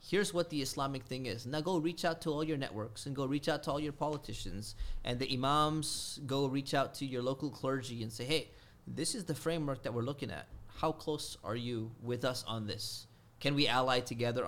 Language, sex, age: English, male, 30-49